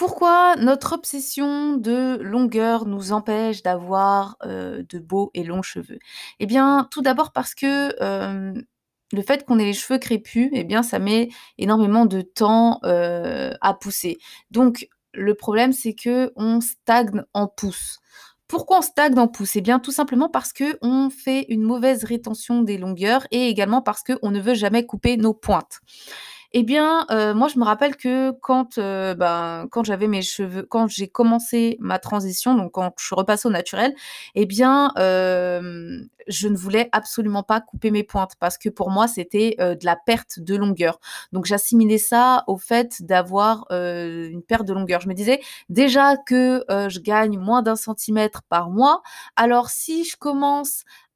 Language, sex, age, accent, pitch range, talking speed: French, female, 20-39, French, 200-255 Hz, 175 wpm